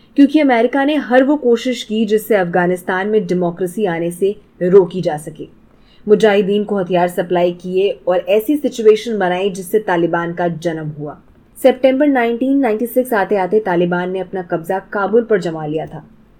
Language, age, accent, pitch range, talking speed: Hindi, 20-39, native, 180-230 Hz, 155 wpm